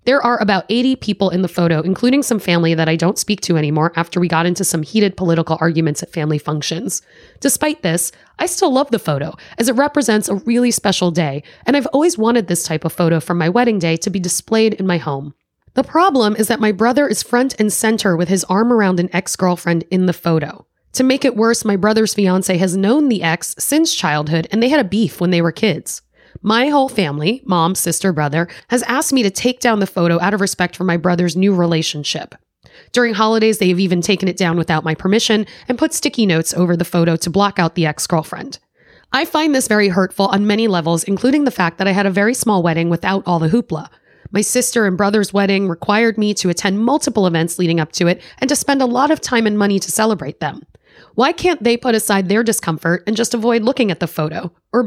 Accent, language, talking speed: American, English, 230 wpm